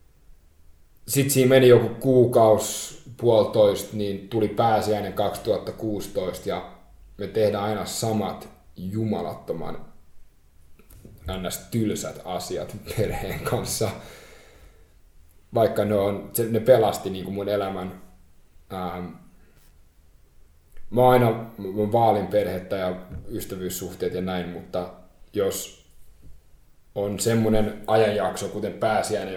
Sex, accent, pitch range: male, native, 90-105 Hz